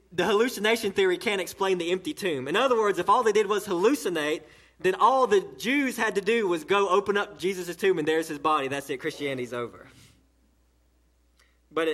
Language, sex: English, male